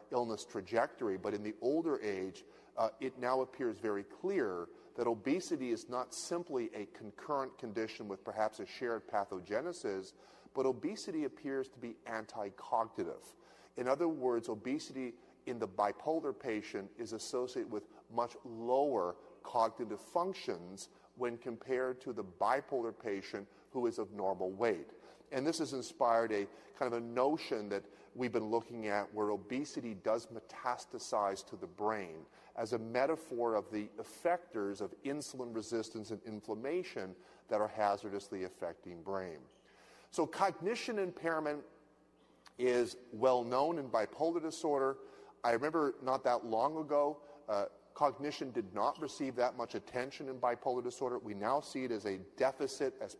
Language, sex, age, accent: English, male, 40-59, American